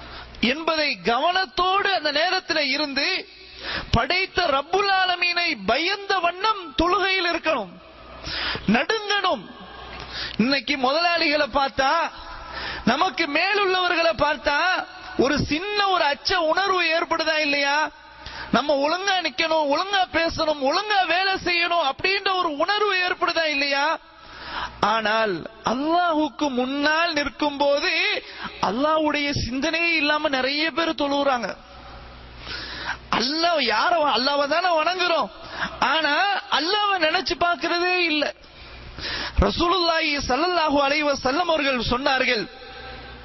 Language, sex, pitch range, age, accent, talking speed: English, male, 290-365 Hz, 30-49, Indian, 90 wpm